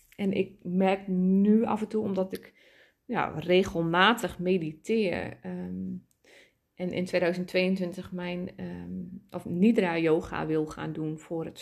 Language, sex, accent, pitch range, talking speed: Dutch, female, Dutch, 180-220 Hz, 125 wpm